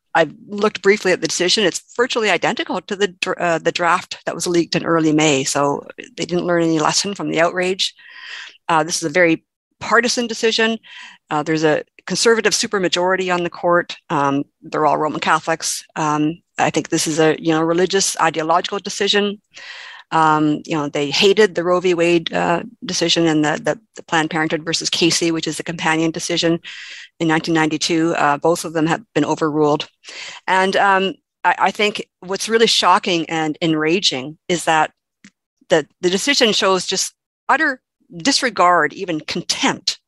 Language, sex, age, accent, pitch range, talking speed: English, female, 50-69, American, 160-195 Hz, 165 wpm